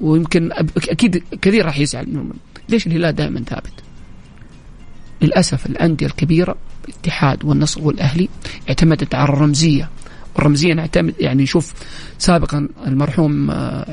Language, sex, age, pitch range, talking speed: English, male, 40-59, 150-180 Hz, 105 wpm